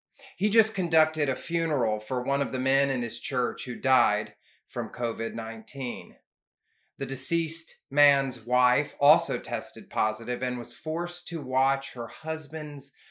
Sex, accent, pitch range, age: male, American, 125-165 Hz, 30-49